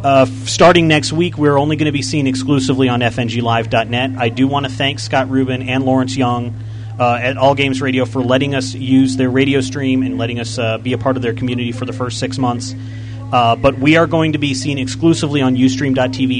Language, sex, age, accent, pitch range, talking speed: English, male, 30-49, American, 120-140 Hz, 225 wpm